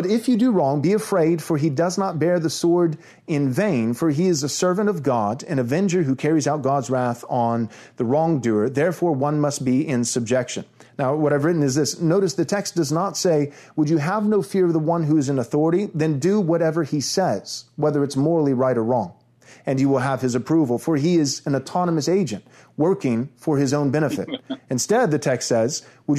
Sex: male